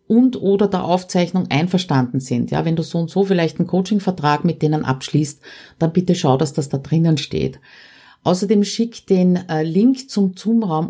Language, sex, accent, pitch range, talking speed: German, female, Austrian, 150-195 Hz, 175 wpm